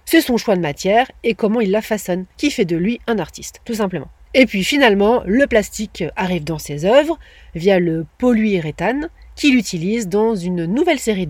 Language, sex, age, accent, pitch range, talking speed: French, female, 30-49, French, 195-250 Hz, 190 wpm